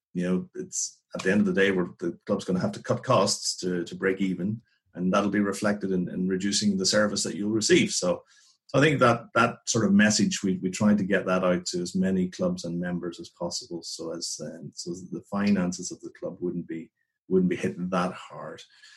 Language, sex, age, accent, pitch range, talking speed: English, male, 30-49, Irish, 90-105 Hz, 235 wpm